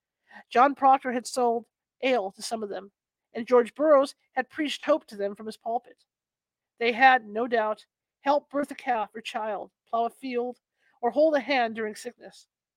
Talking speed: 185 wpm